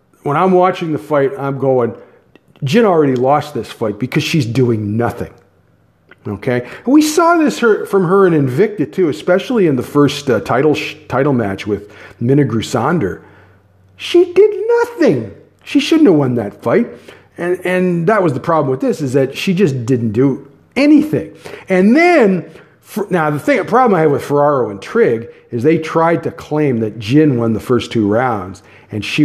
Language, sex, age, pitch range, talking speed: English, male, 40-59, 120-175 Hz, 185 wpm